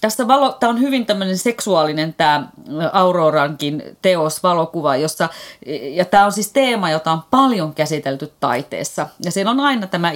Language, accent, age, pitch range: Finnish, native, 30-49, 145-185 Hz